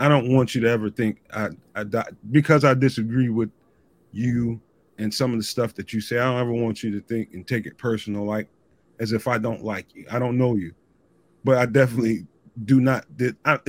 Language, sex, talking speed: English, male, 215 wpm